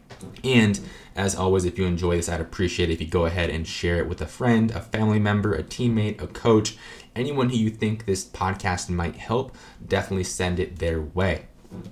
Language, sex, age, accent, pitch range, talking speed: English, male, 20-39, American, 85-105 Hz, 200 wpm